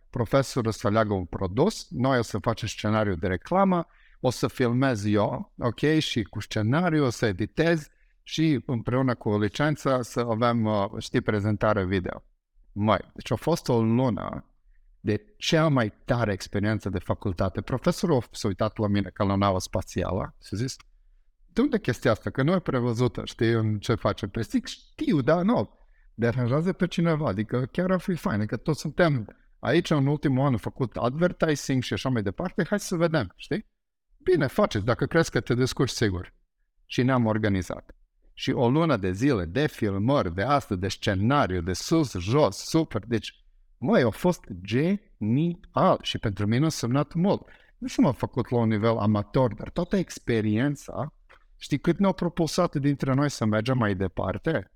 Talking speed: 170 wpm